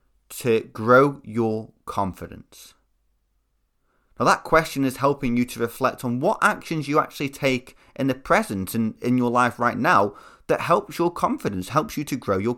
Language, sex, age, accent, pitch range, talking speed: English, male, 30-49, British, 95-135 Hz, 170 wpm